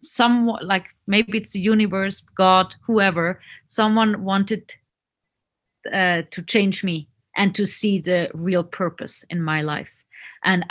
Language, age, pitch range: English, 30-49, 180-220 Hz